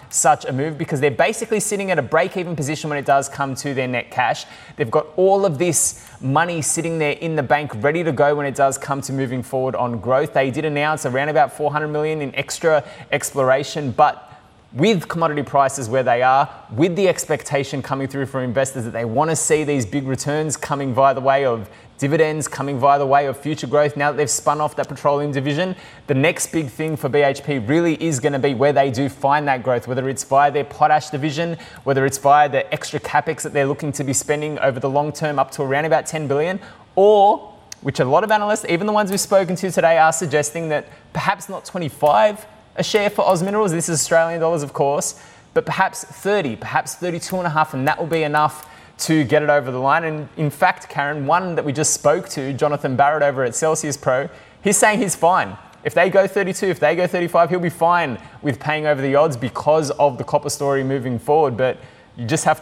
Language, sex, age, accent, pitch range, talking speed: English, male, 20-39, Australian, 135-160 Hz, 225 wpm